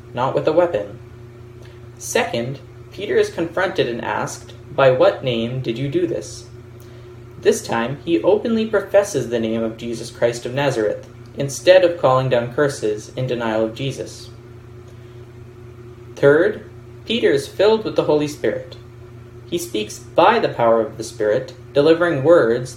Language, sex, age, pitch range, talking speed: English, male, 20-39, 120-130 Hz, 150 wpm